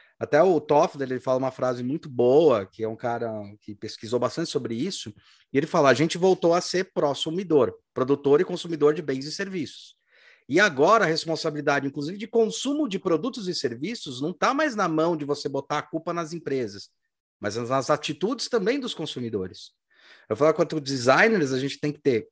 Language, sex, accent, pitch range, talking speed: Portuguese, male, Brazilian, 130-185 Hz, 195 wpm